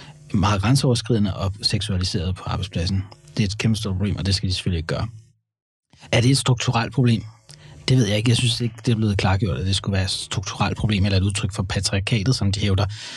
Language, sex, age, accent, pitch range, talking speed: Danish, male, 30-49, native, 100-135 Hz, 230 wpm